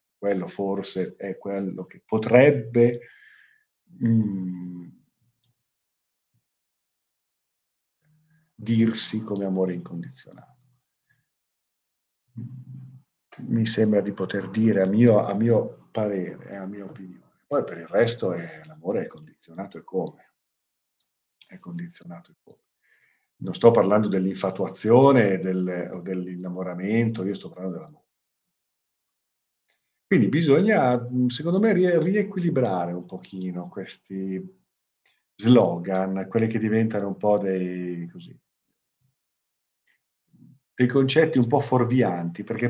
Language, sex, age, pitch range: Italian, male, 50-69, 95-125 Hz